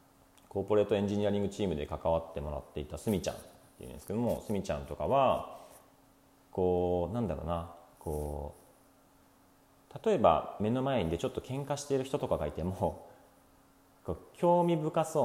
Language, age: Japanese, 40-59